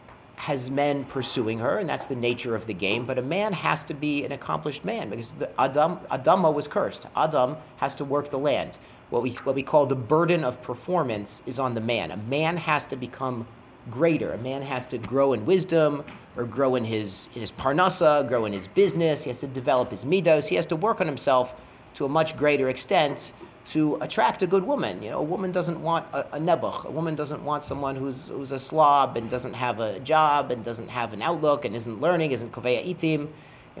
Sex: male